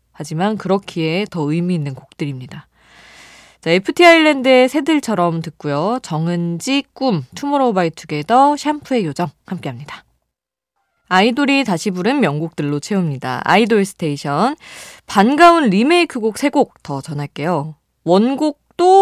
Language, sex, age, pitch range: Korean, female, 20-39, 145-220 Hz